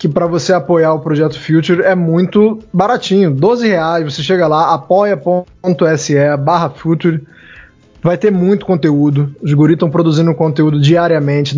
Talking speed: 145 wpm